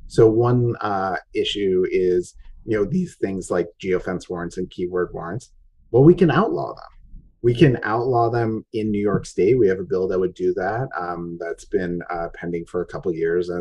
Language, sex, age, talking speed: English, male, 30-49, 205 wpm